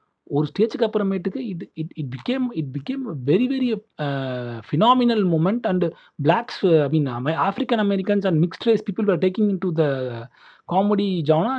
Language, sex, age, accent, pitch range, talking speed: Tamil, male, 30-49, native, 140-195 Hz, 160 wpm